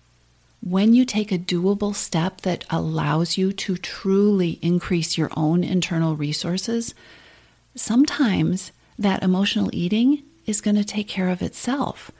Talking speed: 135 wpm